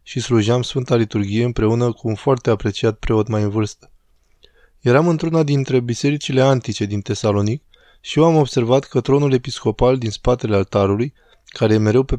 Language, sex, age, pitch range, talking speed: Romanian, male, 20-39, 110-130 Hz, 165 wpm